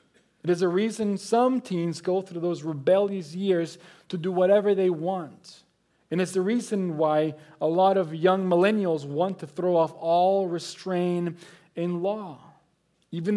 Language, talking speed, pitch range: English, 155 wpm, 165-205 Hz